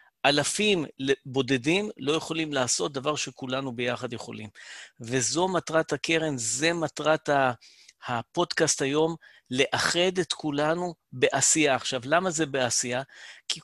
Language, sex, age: Hebrew, male, 50-69